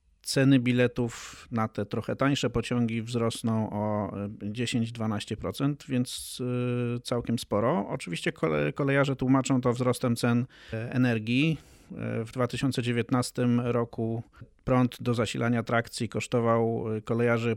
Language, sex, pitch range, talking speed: Polish, male, 115-130 Hz, 100 wpm